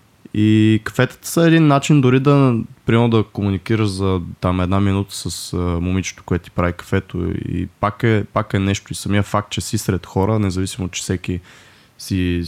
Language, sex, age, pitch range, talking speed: Bulgarian, male, 20-39, 95-115 Hz, 185 wpm